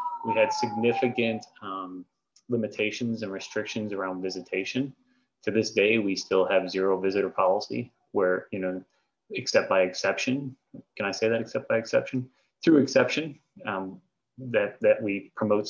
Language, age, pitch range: English, 30-49, 95-115 Hz